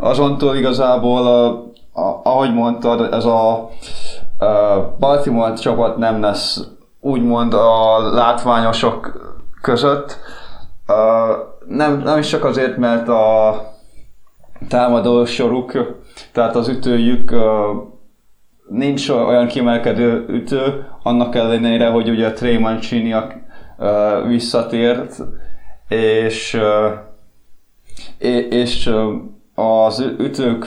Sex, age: male, 20-39